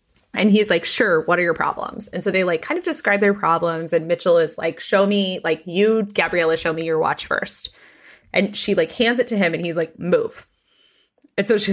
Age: 20-39